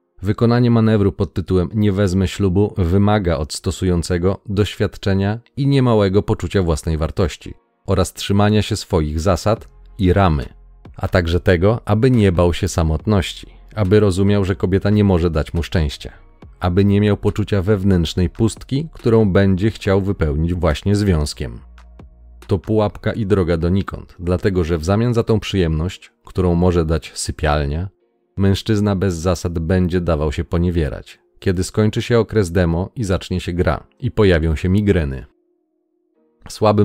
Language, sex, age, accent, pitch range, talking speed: Polish, male, 40-59, native, 85-105 Hz, 145 wpm